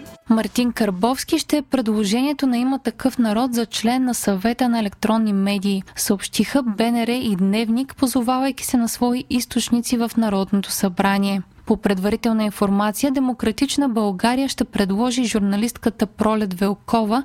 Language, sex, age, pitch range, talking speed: Bulgarian, female, 20-39, 205-255 Hz, 130 wpm